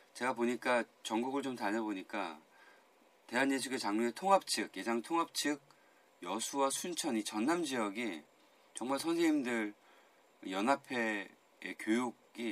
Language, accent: Korean, native